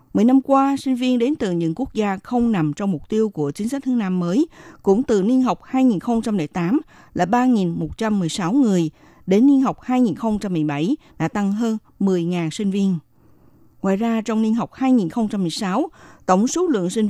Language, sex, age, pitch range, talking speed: Vietnamese, female, 50-69, 175-245 Hz, 170 wpm